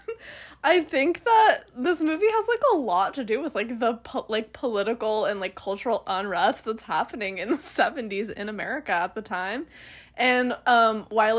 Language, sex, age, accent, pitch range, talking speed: English, female, 10-29, American, 195-265 Hz, 175 wpm